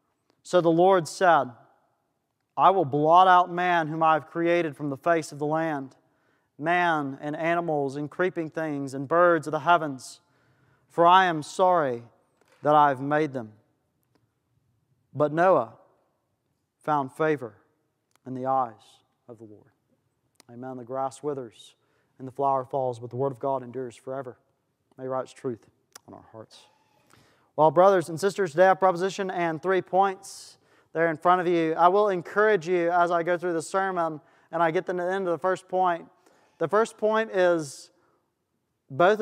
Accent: American